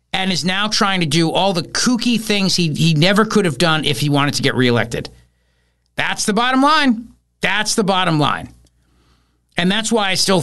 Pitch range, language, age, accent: 130-195 Hz, English, 50-69, American